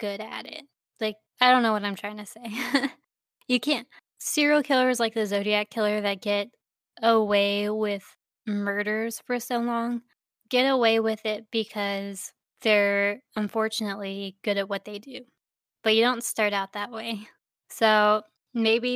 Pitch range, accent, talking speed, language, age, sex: 210-235 Hz, American, 155 wpm, English, 10-29, female